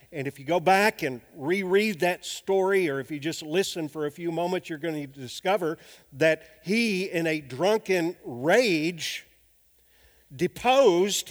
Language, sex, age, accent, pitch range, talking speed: English, male, 50-69, American, 135-200 Hz, 155 wpm